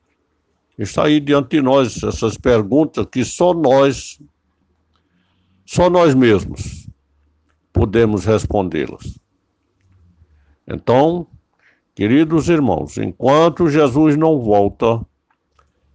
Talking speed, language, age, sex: 85 wpm, Portuguese, 60-79, male